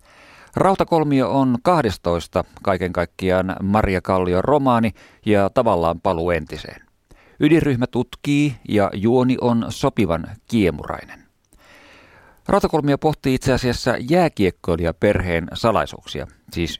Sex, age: male, 50-69